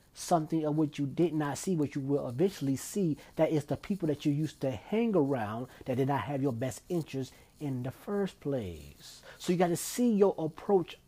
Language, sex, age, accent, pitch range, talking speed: English, male, 30-49, American, 130-165 Hz, 215 wpm